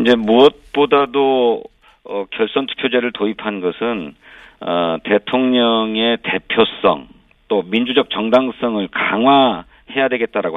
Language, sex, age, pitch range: Korean, male, 50-69, 100-135 Hz